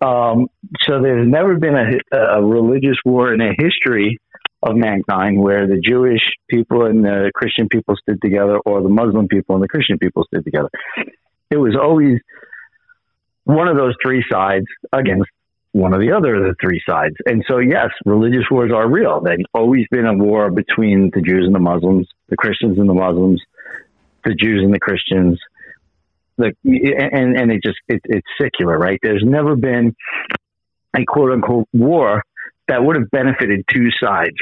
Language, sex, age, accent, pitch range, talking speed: English, male, 50-69, American, 100-125 Hz, 170 wpm